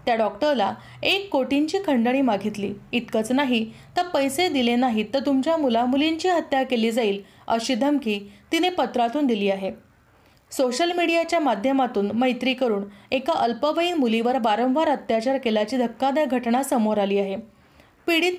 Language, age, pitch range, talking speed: Marathi, 30-49, 225-300 Hz, 130 wpm